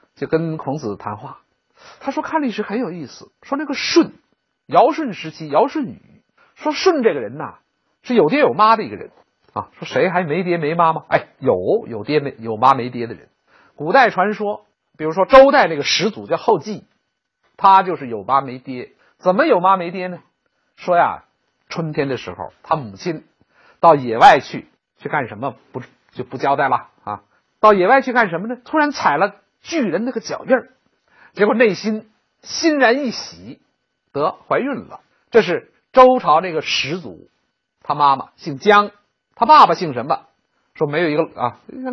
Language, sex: Chinese, male